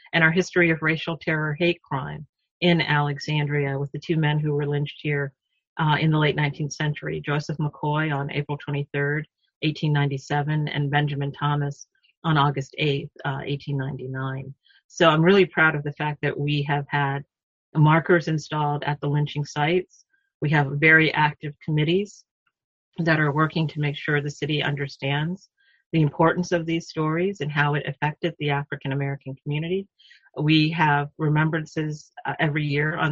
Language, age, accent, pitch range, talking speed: English, 40-59, American, 145-160 Hz, 160 wpm